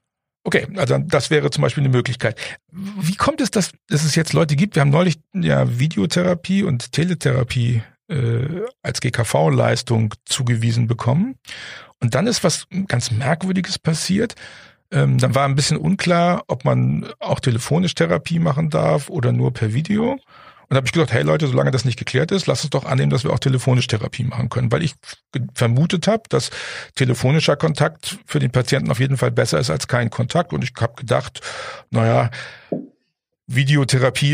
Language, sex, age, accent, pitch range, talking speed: German, male, 50-69, German, 120-160 Hz, 175 wpm